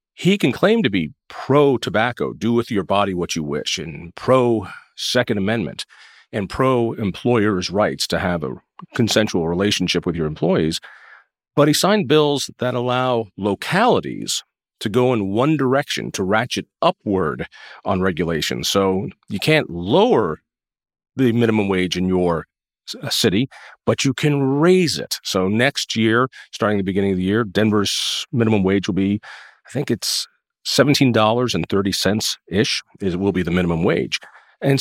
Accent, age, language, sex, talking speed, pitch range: American, 40-59, English, male, 145 wpm, 95-130 Hz